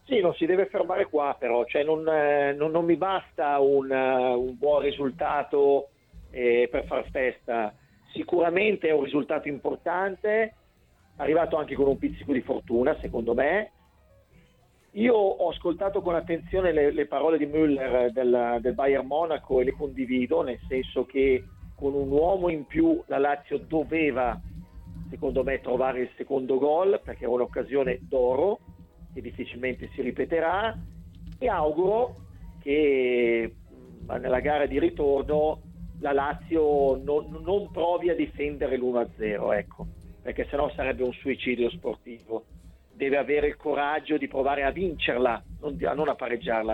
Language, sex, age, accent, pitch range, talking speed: Italian, male, 50-69, native, 125-160 Hz, 140 wpm